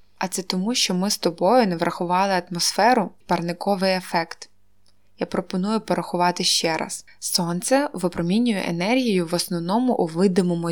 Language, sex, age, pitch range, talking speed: Ukrainian, female, 20-39, 175-210 Hz, 135 wpm